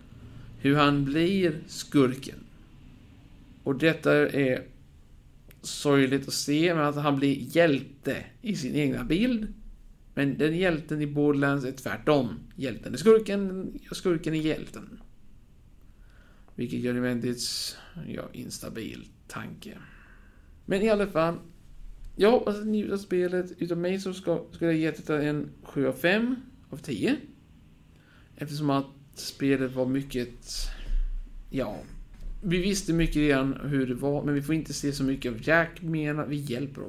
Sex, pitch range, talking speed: male, 130-170 Hz, 145 wpm